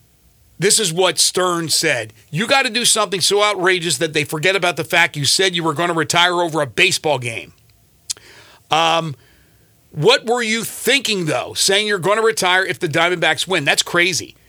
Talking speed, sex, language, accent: 190 wpm, male, English, American